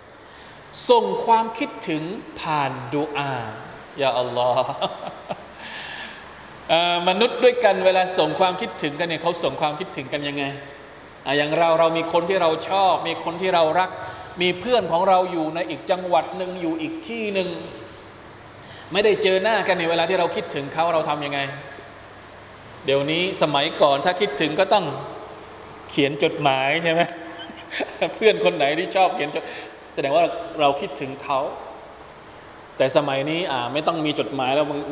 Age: 20-39